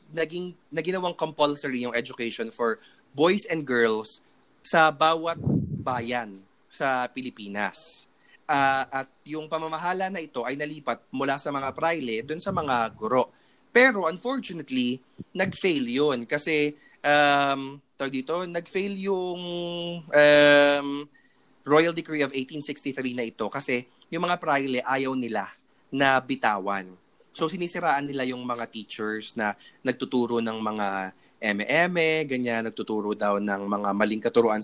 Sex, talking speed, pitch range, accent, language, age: male, 130 wpm, 115-150 Hz, Filipino, English, 20-39